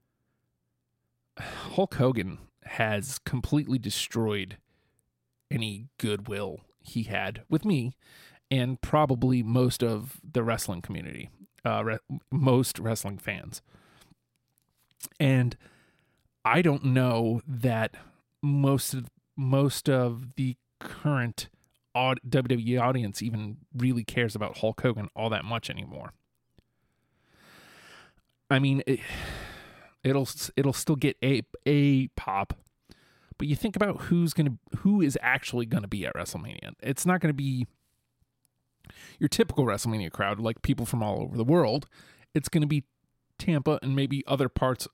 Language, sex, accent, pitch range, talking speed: English, male, American, 115-140 Hz, 120 wpm